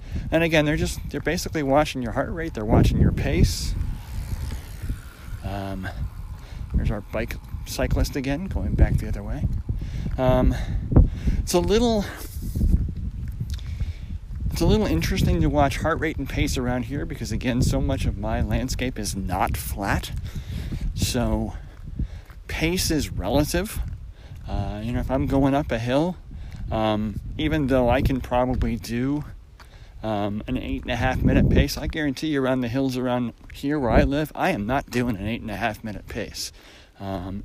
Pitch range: 95-125 Hz